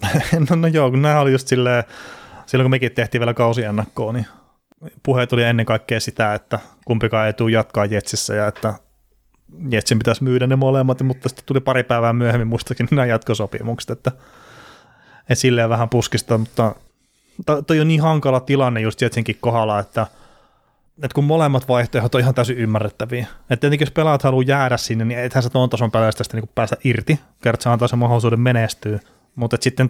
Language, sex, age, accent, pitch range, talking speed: Finnish, male, 30-49, native, 110-130 Hz, 170 wpm